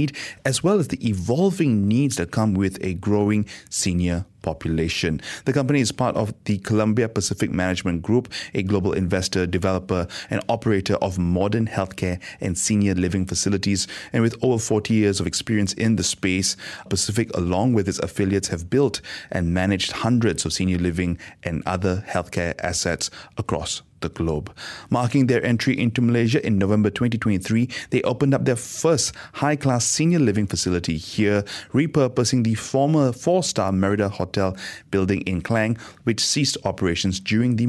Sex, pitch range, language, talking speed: male, 95-120 Hz, English, 160 wpm